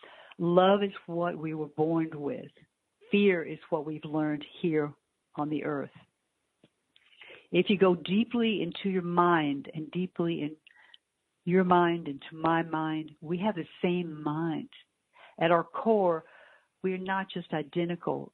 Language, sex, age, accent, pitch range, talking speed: English, female, 60-79, American, 160-185 Hz, 145 wpm